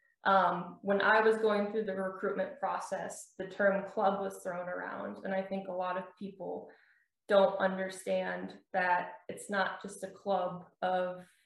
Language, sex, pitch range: English, female, 185-205 Hz